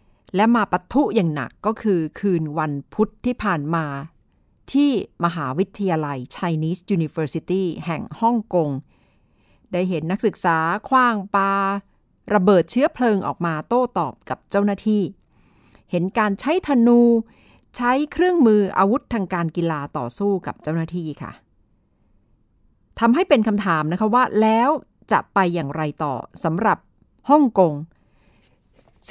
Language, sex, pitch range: Thai, female, 155-220 Hz